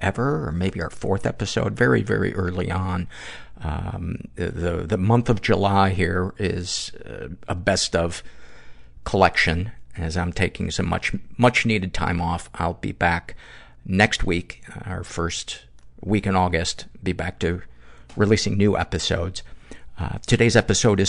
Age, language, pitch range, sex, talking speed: 50-69, English, 90-105 Hz, male, 145 wpm